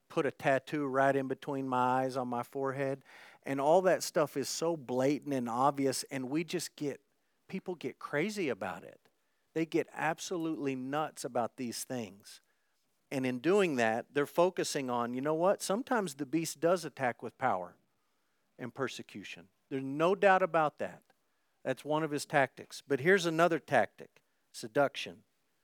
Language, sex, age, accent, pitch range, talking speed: English, male, 50-69, American, 120-145 Hz, 165 wpm